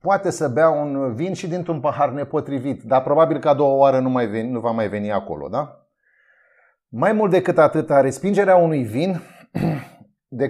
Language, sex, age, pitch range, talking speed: Romanian, male, 30-49, 130-170 Hz, 185 wpm